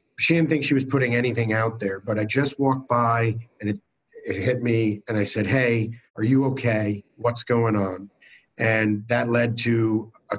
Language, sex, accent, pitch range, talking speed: English, male, American, 105-135 Hz, 195 wpm